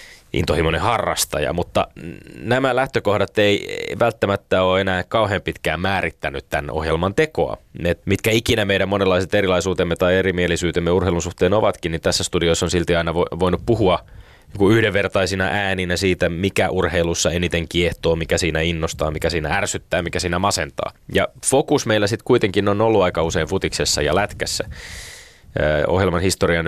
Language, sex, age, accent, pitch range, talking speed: Finnish, male, 20-39, native, 85-100 Hz, 145 wpm